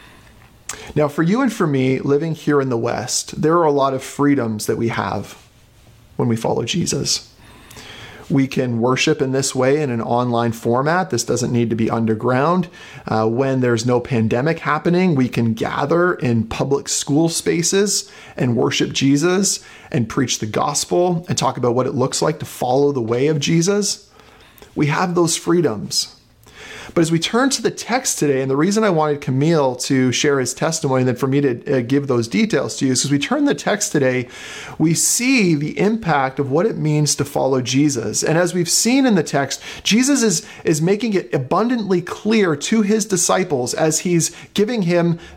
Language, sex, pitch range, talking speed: English, male, 130-180 Hz, 190 wpm